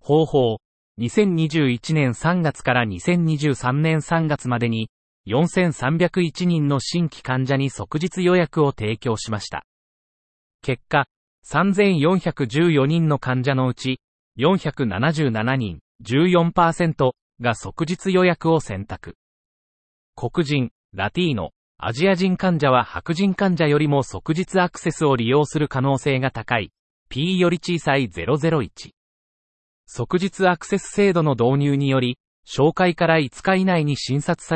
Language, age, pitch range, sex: Japanese, 40-59, 120-170 Hz, male